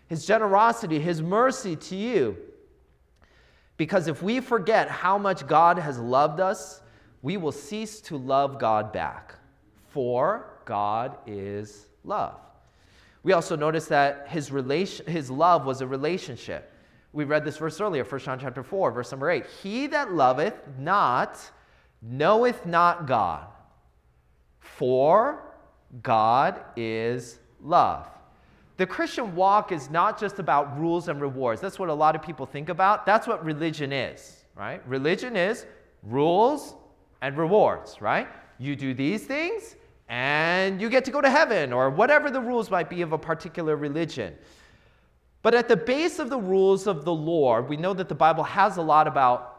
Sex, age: male, 30-49